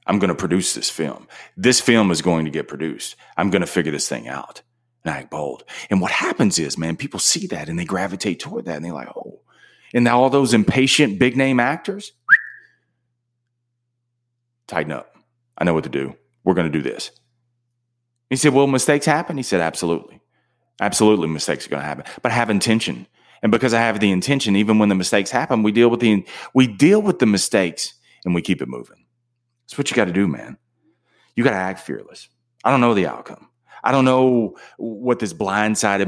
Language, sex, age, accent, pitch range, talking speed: English, male, 30-49, American, 100-130 Hz, 210 wpm